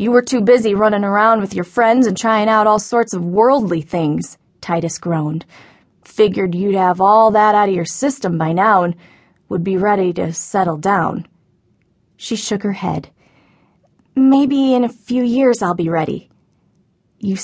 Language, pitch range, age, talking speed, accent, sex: English, 195-270 Hz, 20-39, 170 wpm, American, female